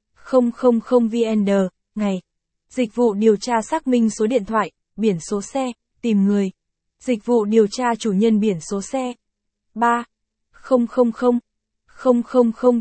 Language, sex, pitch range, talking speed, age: Vietnamese, female, 205-245 Hz, 135 wpm, 20-39